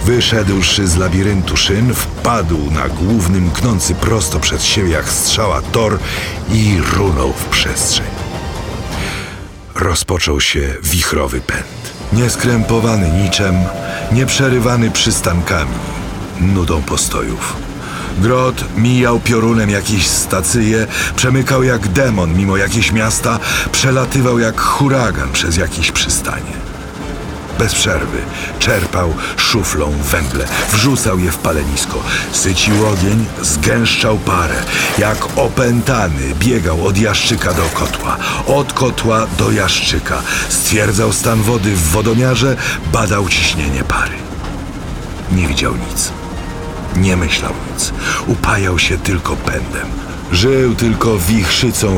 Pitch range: 85-110 Hz